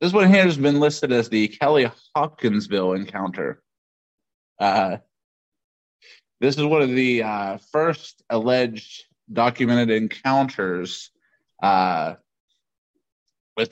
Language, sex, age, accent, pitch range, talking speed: English, male, 30-49, American, 110-135 Hz, 105 wpm